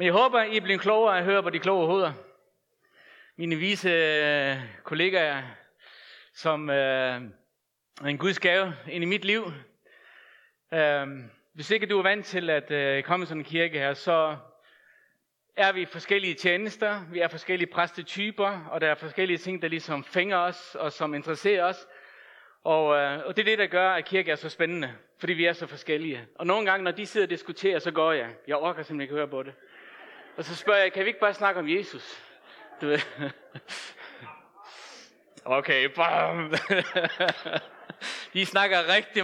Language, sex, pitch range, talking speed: Danish, male, 150-195 Hz, 180 wpm